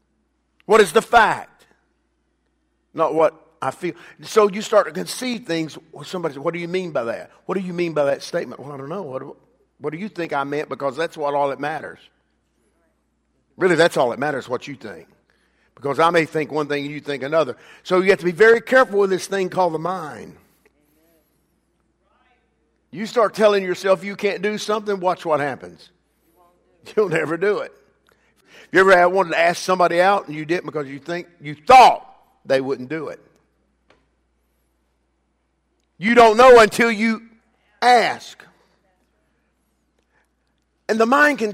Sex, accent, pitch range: male, American, 155-220 Hz